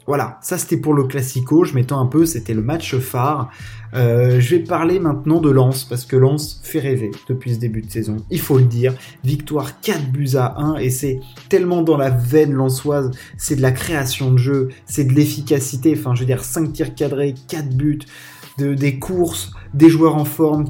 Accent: French